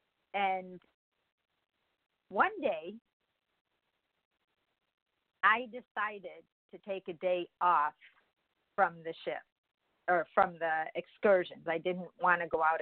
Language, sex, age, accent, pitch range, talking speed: English, female, 50-69, American, 165-205 Hz, 110 wpm